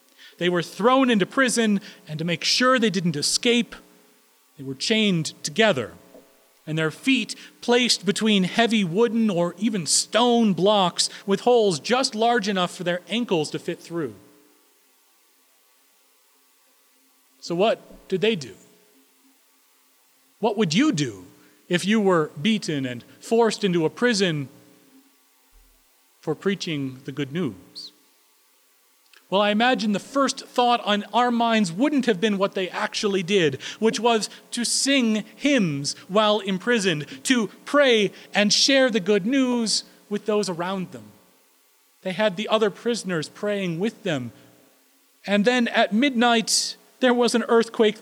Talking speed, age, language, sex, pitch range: 140 wpm, 40-59, English, male, 165-235 Hz